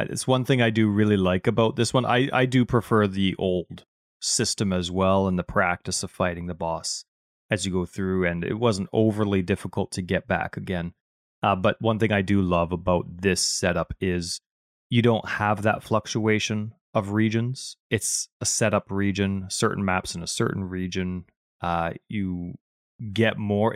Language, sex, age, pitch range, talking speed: English, male, 30-49, 90-110 Hz, 180 wpm